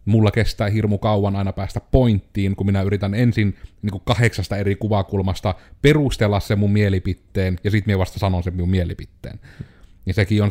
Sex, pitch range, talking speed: male, 95-110 Hz, 170 wpm